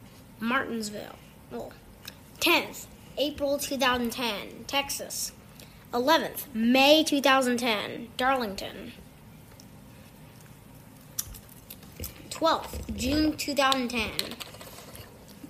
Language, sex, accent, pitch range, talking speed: English, female, American, 245-295 Hz, 45 wpm